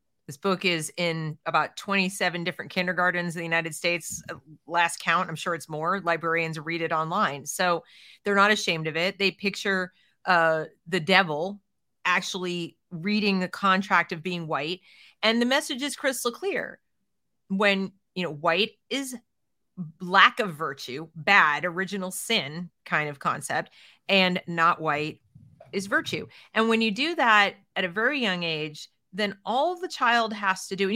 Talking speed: 160 wpm